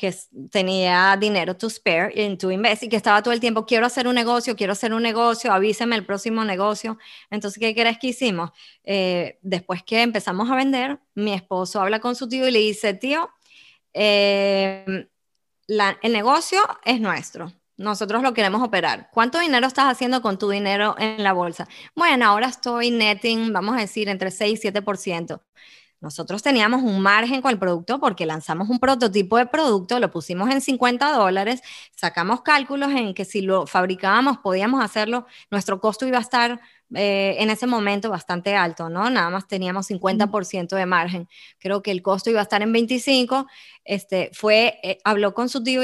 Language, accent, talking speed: English, American, 180 wpm